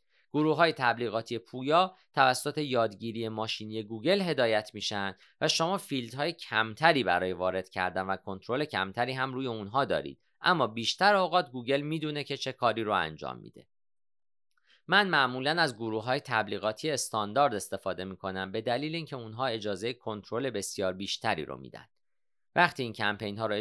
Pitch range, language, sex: 110-140 Hz, Persian, male